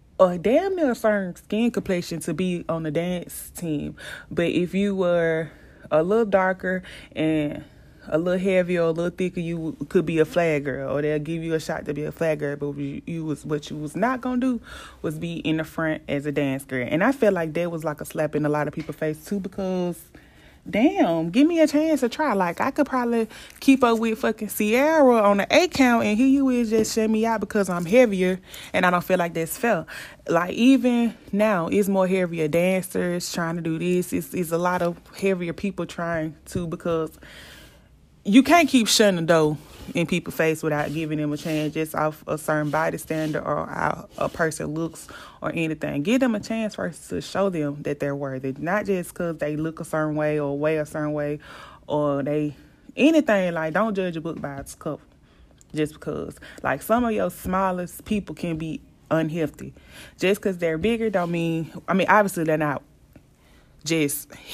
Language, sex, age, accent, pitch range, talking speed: English, female, 20-39, American, 155-205 Hz, 210 wpm